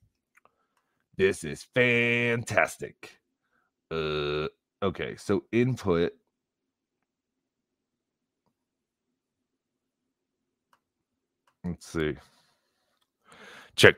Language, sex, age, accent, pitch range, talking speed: English, male, 30-49, American, 85-115 Hz, 45 wpm